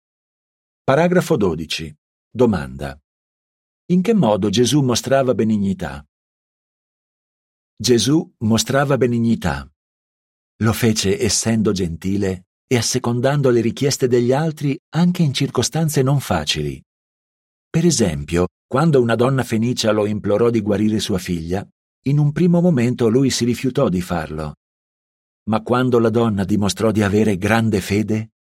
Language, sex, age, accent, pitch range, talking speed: Italian, male, 50-69, native, 95-130 Hz, 120 wpm